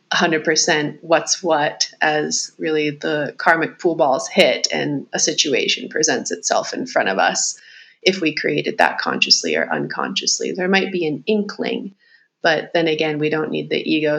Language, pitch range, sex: English, 155-185 Hz, female